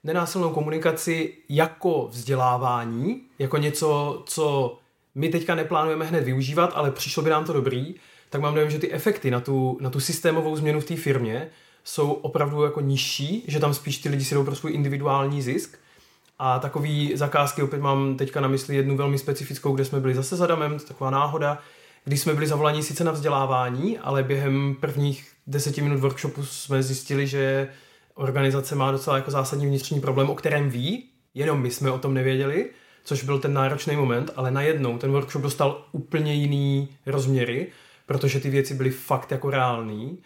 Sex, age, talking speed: male, 20-39, 175 wpm